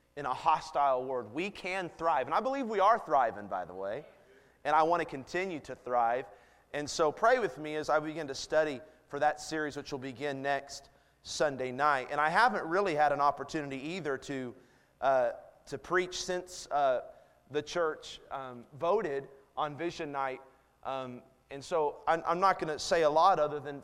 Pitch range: 135-165 Hz